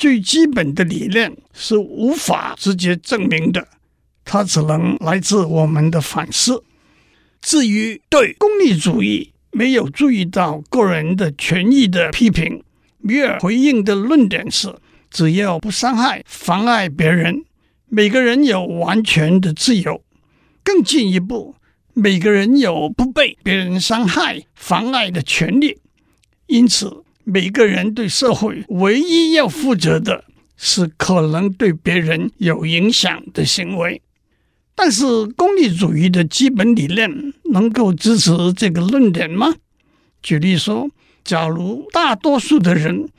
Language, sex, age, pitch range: Chinese, male, 60-79, 175-250 Hz